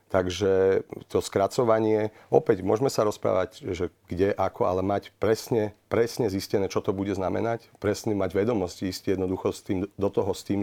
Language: Slovak